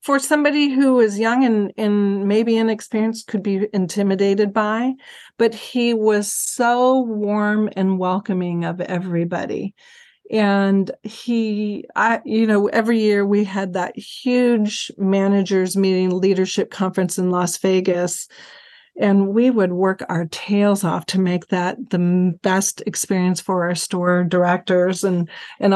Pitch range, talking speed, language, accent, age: 185-225 Hz, 135 wpm, English, American, 40-59